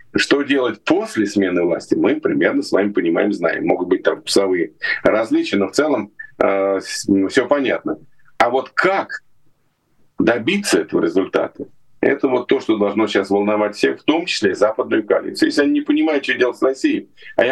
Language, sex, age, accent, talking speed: Russian, male, 40-59, native, 180 wpm